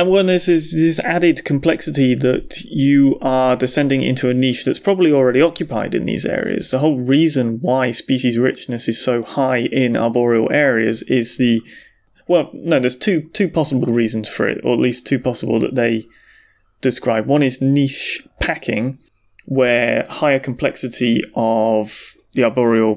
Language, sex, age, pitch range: English, male, 30-49, 115-135 Hz